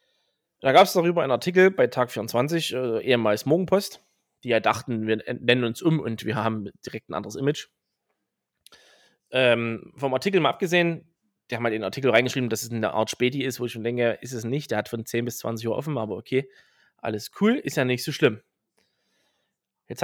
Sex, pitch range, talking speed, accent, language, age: male, 115-150 Hz, 200 wpm, German, German, 20-39